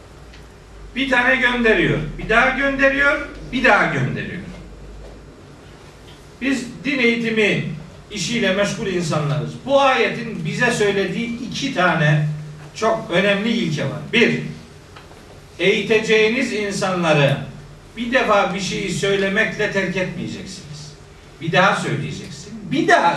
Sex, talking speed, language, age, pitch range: male, 105 wpm, Turkish, 50-69, 165-230 Hz